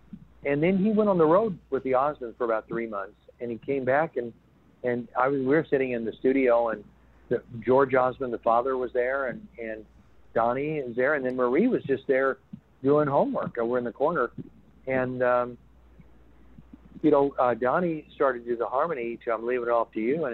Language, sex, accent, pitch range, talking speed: English, male, American, 110-145 Hz, 210 wpm